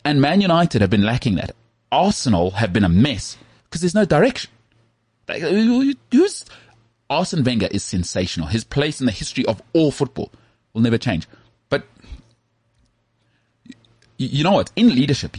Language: English